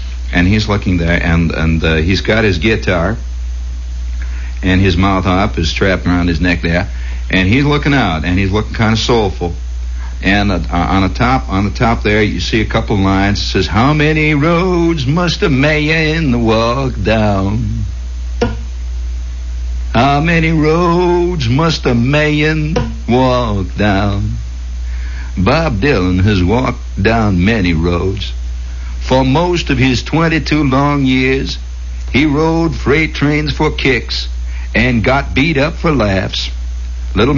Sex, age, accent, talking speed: male, 60-79, American, 150 wpm